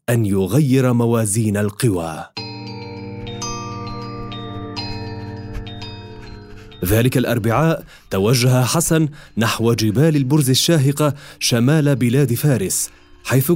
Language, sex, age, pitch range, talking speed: Arabic, male, 30-49, 100-140 Hz, 70 wpm